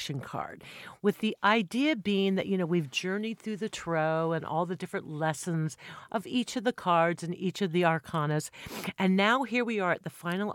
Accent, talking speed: American, 205 wpm